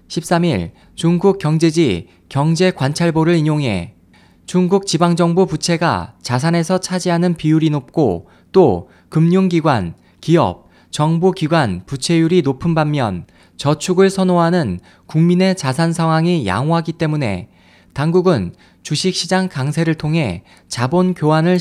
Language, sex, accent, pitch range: Korean, male, native, 120-175 Hz